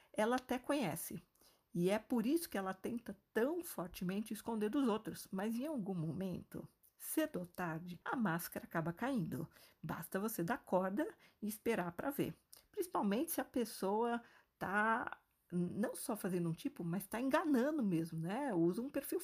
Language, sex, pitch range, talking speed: Portuguese, female, 175-265 Hz, 160 wpm